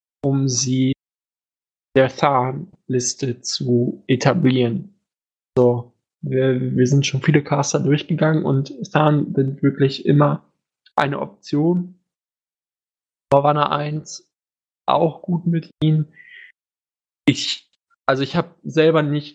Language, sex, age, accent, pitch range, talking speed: German, male, 20-39, German, 135-155 Hz, 100 wpm